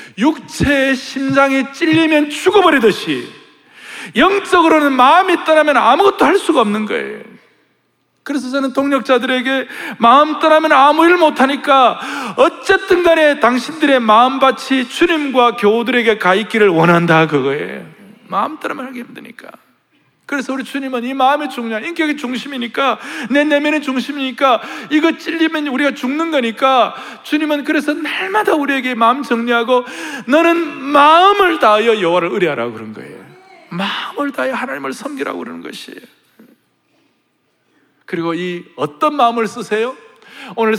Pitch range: 225-300 Hz